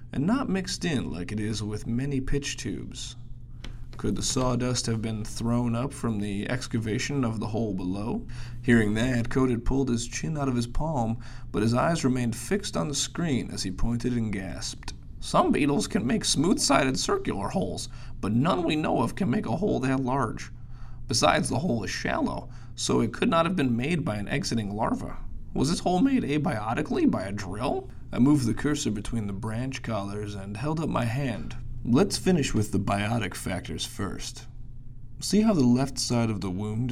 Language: English